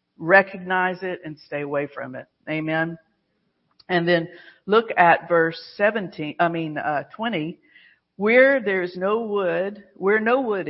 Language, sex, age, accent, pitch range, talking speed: English, female, 50-69, American, 160-220 Hz, 145 wpm